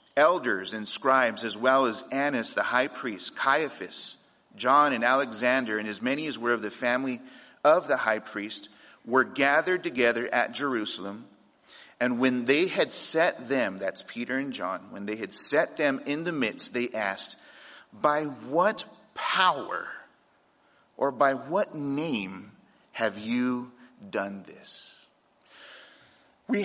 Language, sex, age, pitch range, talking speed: English, male, 40-59, 115-145 Hz, 140 wpm